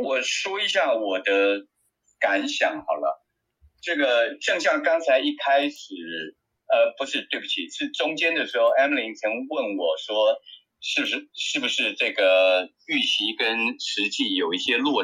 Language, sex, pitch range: Chinese, male, 255-320 Hz